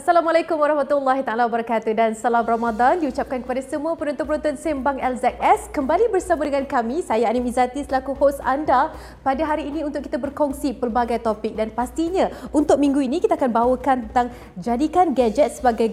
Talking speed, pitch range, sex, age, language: 165 wpm, 230-285 Hz, female, 30-49, Malay